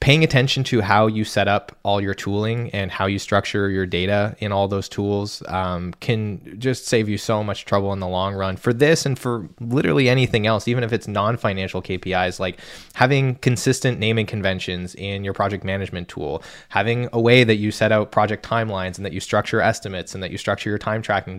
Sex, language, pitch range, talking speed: male, English, 100-115 Hz, 210 wpm